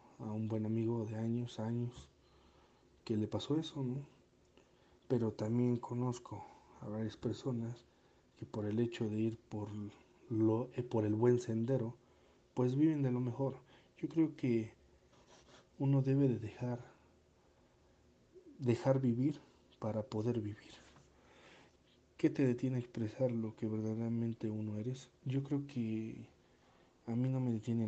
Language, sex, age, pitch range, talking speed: Spanish, male, 40-59, 105-125 Hz, 140 wpm